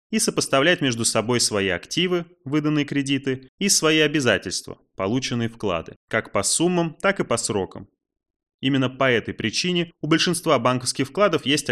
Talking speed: 150 wpm